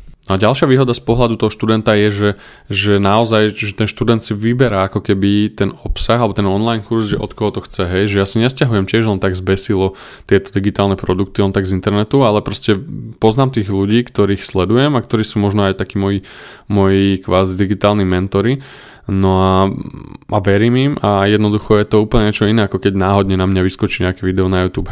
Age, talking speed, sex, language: 20-39, 205 wpm, male, Slovak